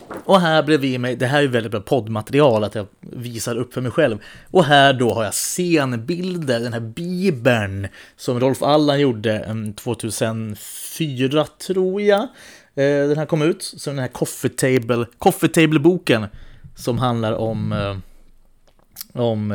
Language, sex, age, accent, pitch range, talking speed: Swedish, male, 30-49, native, 115-155 Hz, 150 wpm